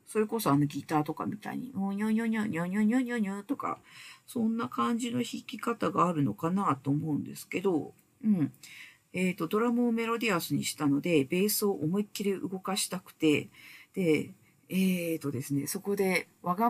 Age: 50-69